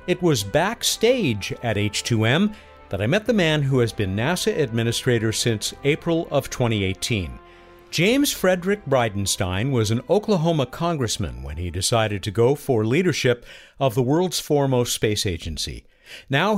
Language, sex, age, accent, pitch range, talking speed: English, male, 50-69, American, 105-170 Hz, 145 wpm